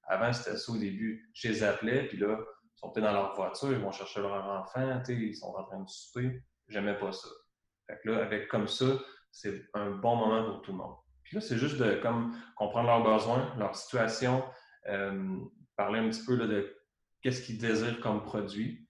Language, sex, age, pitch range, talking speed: French, male, 20-39, 100-115 Hz, 205 wpm